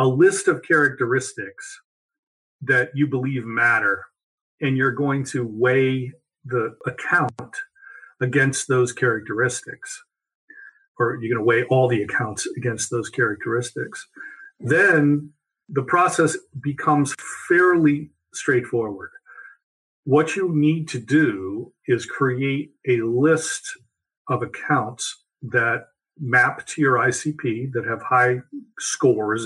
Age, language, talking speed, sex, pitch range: 50-69, English, 110 wpm, male, 120-155 Hz